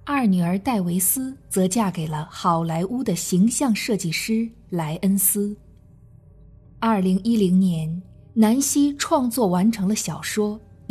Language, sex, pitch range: Chinese, female, 175-235 Hz